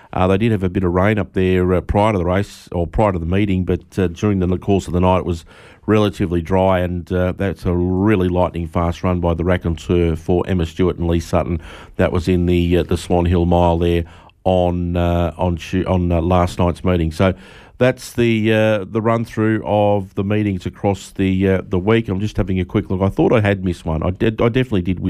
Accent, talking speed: Australian, 240 wpm